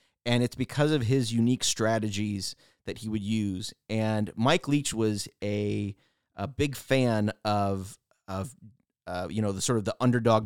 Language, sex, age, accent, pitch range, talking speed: English, male, 30-49, American, 100-120 Hz, 165 wpm